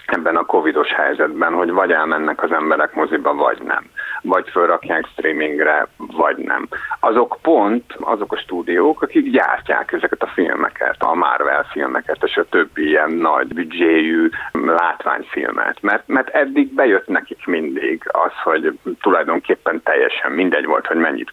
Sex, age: male, 50-69